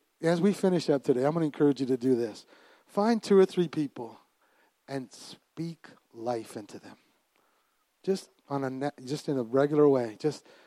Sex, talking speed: male, 180 wpm